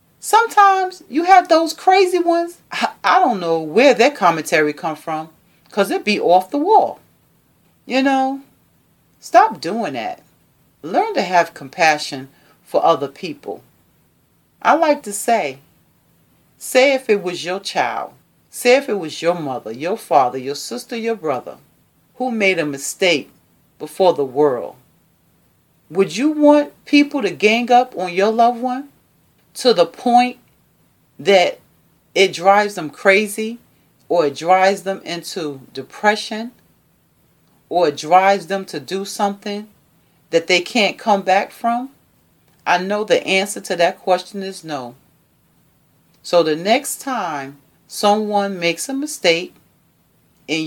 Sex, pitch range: female, 170-250 Hz